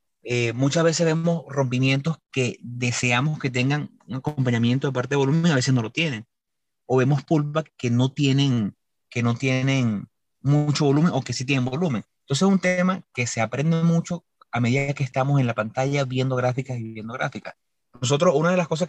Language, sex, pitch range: Spanish, male, 125-160 Hz